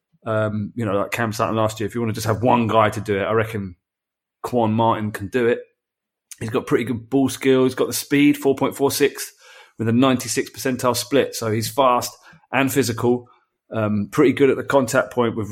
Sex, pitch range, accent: male, 110-130 Hz, British